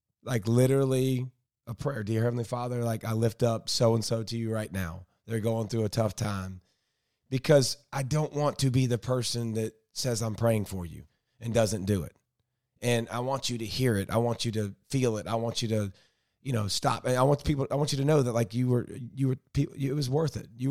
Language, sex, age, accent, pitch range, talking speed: English, male, 30-49, American, 115-130 Hz, 240 wpm